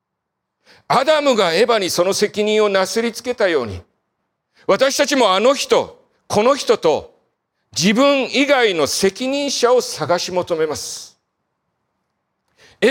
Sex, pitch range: male, 205-290 Hz